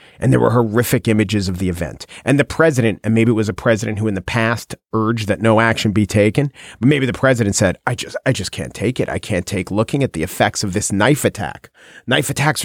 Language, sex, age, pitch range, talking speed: English, male, 40-59, 110-150 Hz, 245 wpm